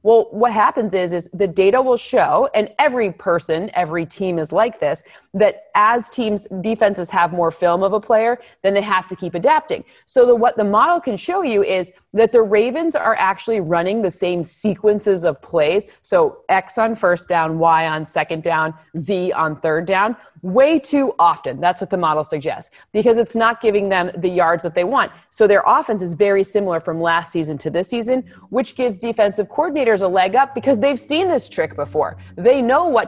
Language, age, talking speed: English, 30-49, 205 wpm